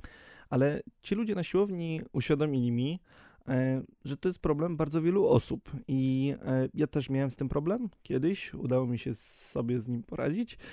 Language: Polish